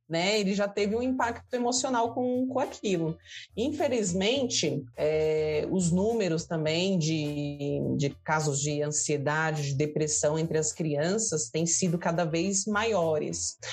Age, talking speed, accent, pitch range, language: 30-49, 125 wpm, Brazilian, 160-205 Hz, Portuguese